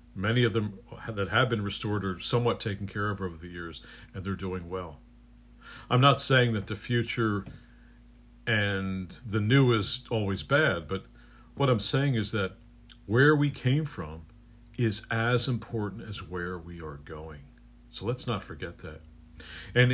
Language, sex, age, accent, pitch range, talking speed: English, male, 50-69, American, 90-120 Hz, 165 wpm